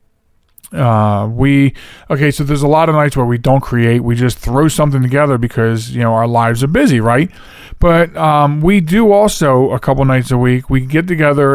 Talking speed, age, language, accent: 205 wpm, 40-59, English, American